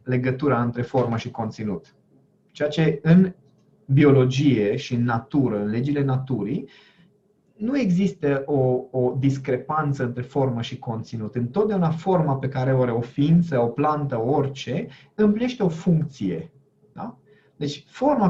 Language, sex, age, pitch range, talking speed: Romanian, male, 30-49, 135-210 Hz, 135 wpm